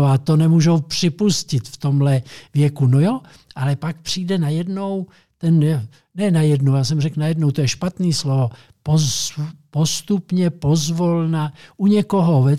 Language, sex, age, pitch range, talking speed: Czech, male, 60-79, 145-175 Hz, 150 wpm